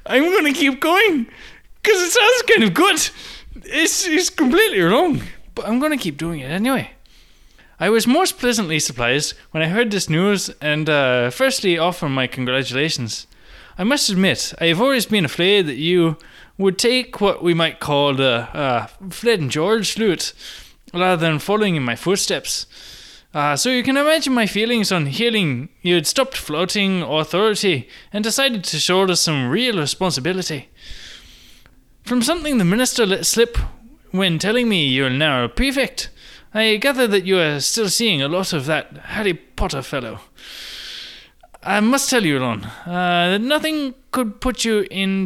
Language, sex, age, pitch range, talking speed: English, male, 20-39, 160-250 Hz, 170 wpm